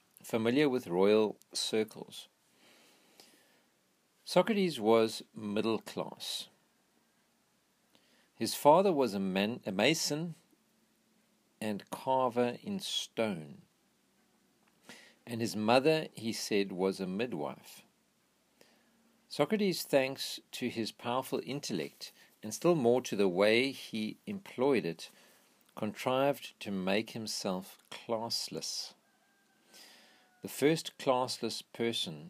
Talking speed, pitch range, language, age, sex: 95 wpm, 95-130 Hz, English, 50-69, male